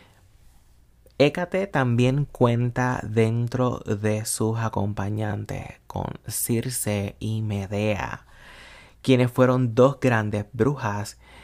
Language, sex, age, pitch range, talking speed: Spanish, male, 30-49, 105-125 Hz, 85 wpm